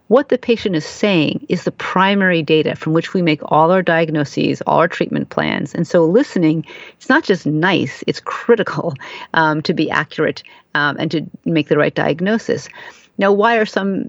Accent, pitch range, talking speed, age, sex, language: American, 160-215 Hz, 185 wpm, 40-59, female, English